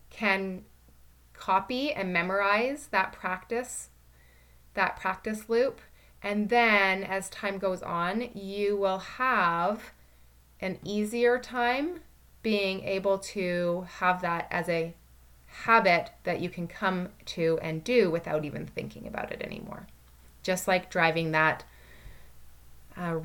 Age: 20-39